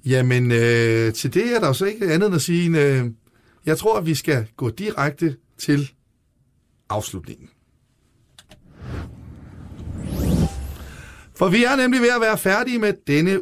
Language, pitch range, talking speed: Danish, 125-170 Hz, 150 wpm